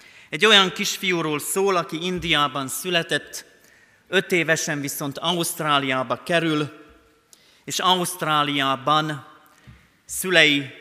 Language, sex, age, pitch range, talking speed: Hungarian, male, 30-49, 135-165 Hz, 85 wpm